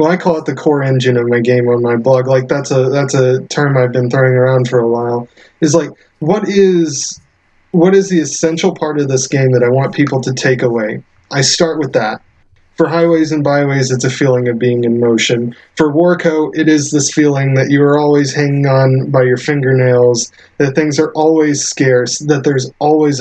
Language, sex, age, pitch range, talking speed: English, male, 20-39, 125-155 Hz, 215 wpm